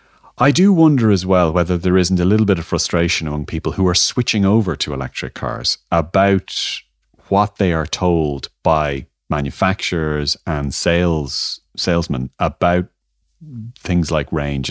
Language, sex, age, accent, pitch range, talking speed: English, male, 30-49, Irish, 75-95 Hz, 145 wpm